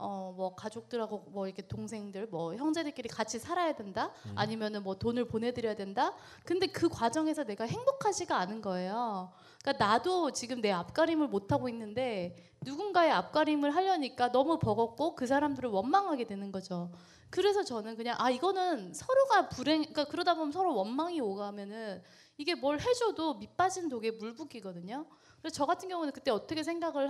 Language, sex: Korean, female